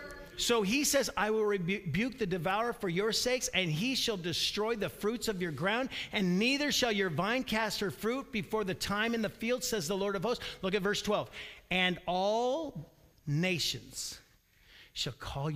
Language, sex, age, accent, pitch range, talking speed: English, male, 50-69, American, 140-205 Hz, 185 wpm